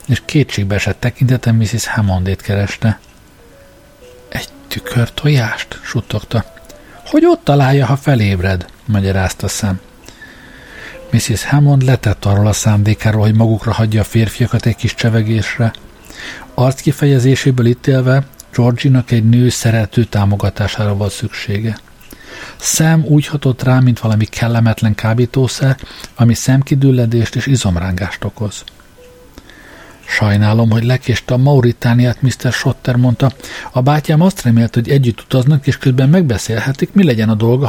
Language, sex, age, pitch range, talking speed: Hungarian, male, 50-69, 105-130 Hz, 125 wpm